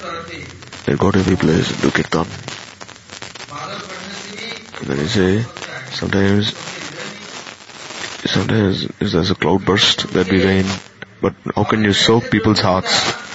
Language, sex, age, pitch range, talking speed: English, male, 30-49, 90-125 Hz, 125 wpm